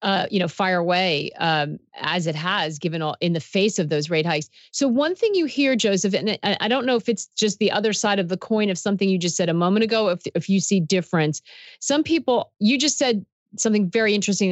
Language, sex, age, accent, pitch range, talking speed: English, female, 40-59, American, 165-210 Hz, 240 wpm